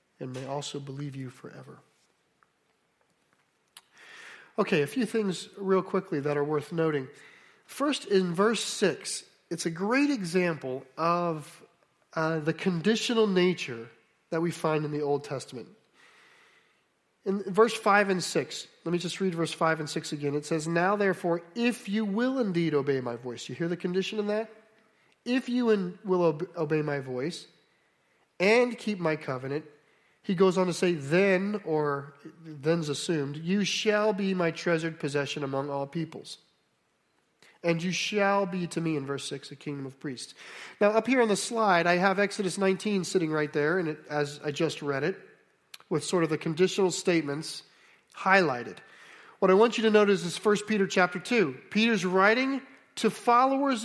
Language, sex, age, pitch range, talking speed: English, male, 40-59, 155-210 Hz, 165 wpm